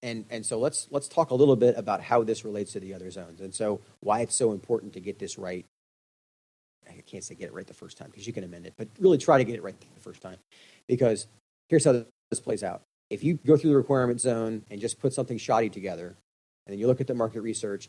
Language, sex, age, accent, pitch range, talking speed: English, male, 30-49, American, 100-120 Hz, 260 wpm